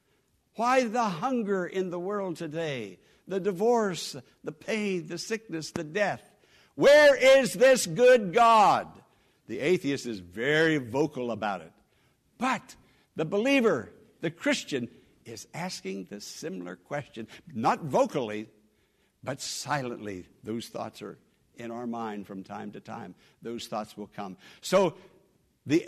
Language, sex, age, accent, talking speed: English, male, 60-79, American, 130 wpm